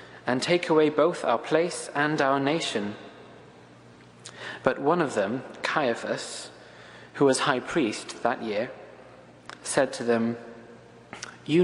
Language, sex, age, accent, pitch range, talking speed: English, male, 30-49, British, 105-155 Hz, 125 wpm